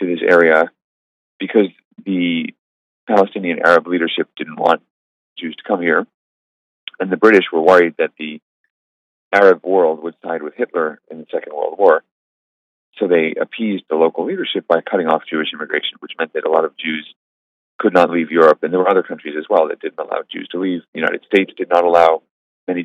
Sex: male